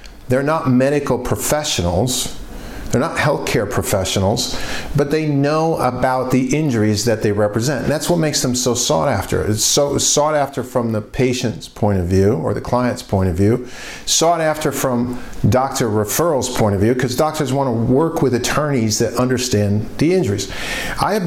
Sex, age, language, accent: male, 50-69, English, American